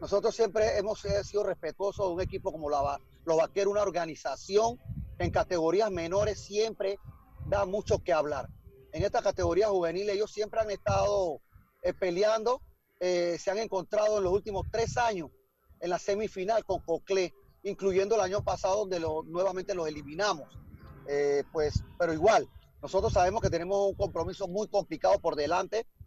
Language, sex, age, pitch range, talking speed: Spanish, male, 40-59, 170-210 Hz, 160 wpm